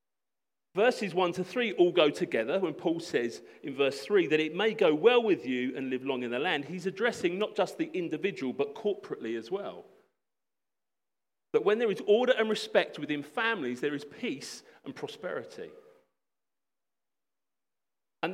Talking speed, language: 165 wpm, English